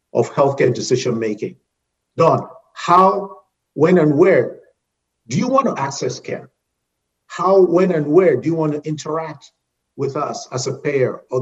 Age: 50-69